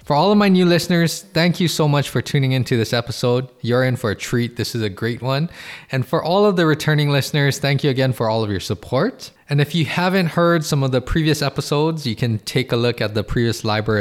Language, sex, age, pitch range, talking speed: English, male, 20-39, 115-150 Hz, 255 wpm